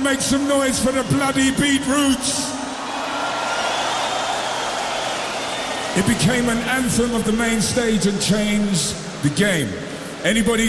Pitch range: 150-215 Hz